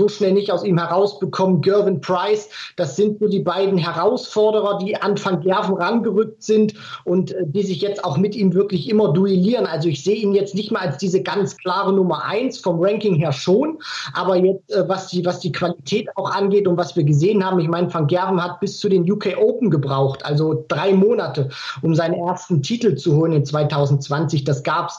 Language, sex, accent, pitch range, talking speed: German, male, German, 170-205 Hz, 205 wpm